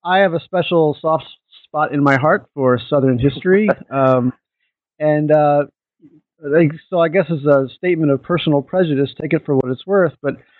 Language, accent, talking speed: English, American, 175 wpm